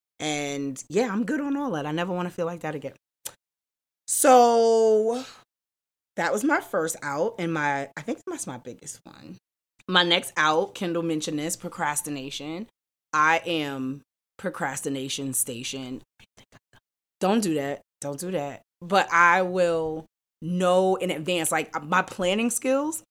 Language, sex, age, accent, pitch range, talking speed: English, female, 20-39, American, 140-180 Hz, 145 wpm